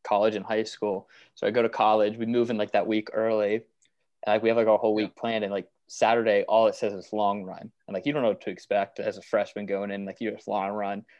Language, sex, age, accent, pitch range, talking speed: English, male, 20-39, American, 105-125 Hz, 275 wpm